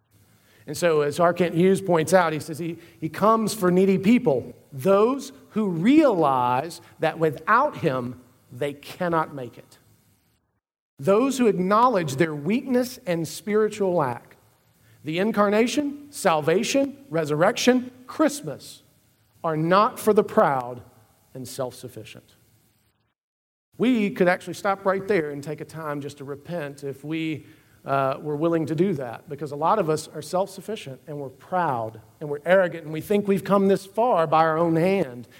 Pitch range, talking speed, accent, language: 130-200 Hz, 155 wpm, American, English